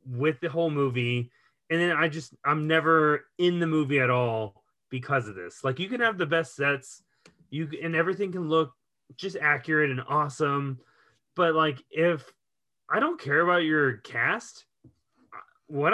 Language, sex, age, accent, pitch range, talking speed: English, male, 30-49, American, 130-160 Hz, 165 wpm